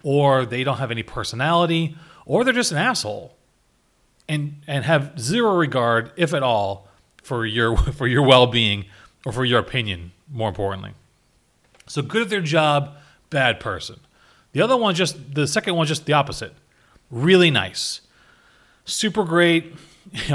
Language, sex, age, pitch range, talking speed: English, male, 30-49, 130-170 Hz, 155 wpm